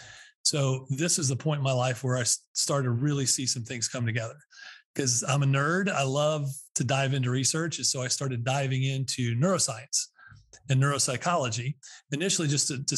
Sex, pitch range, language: male, 125-160 Hz, English